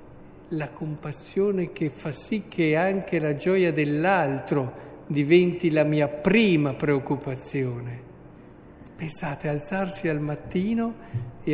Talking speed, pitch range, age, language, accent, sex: 105 wpm, 135-180 Hz, 60-79, Italian, native, male